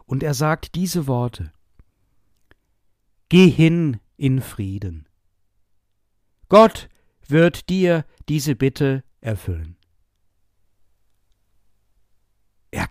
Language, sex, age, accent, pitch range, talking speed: German, male, 60-79, German, 100-150 Hz, 75 wpm